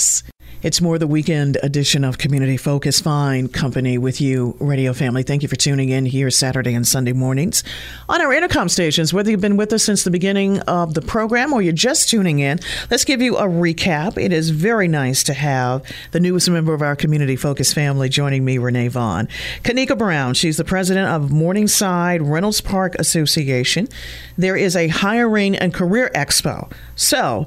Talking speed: 185 wpm